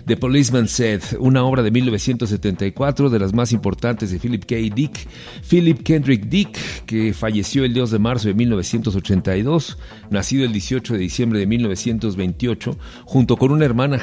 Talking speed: 160 wpm